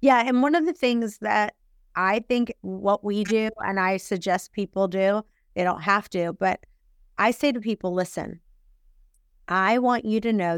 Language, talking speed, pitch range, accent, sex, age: English, 180 wpm, 185-225 Hz, American, female, 30-49